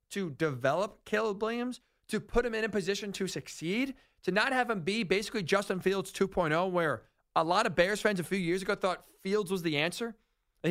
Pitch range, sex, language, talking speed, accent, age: 160-215 Hz, male, English, 205 wpm, American, 40-59